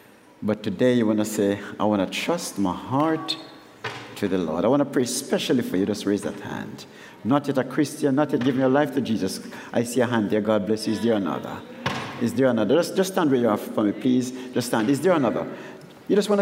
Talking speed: 250 wpm